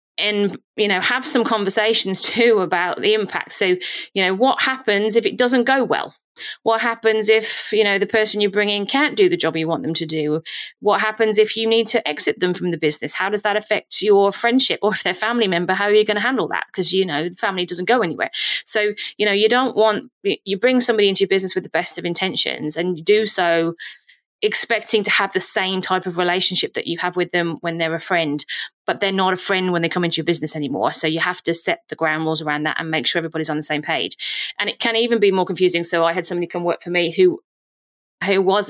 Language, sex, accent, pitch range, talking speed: English, female, British, 170-215 Hz, 255 wpm